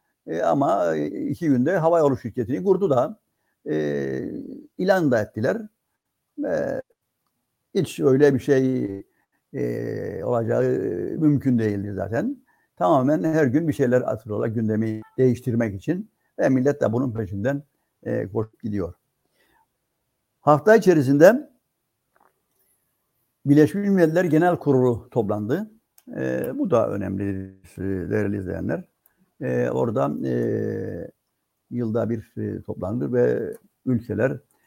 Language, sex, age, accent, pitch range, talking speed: Turkish, male, 60-79, native, 105-150 Hz, 105 wpm